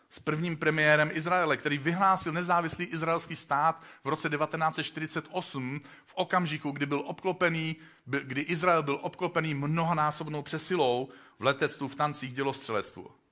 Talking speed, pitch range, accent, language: 125 wpm, 125-160 Hz, native, Czech